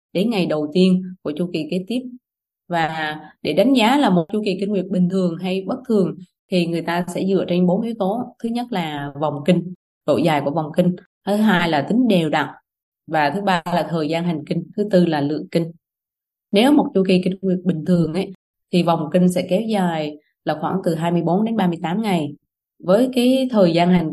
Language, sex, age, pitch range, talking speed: Vietnamese, female, 20-39, 165-195 Hz, 220 wpm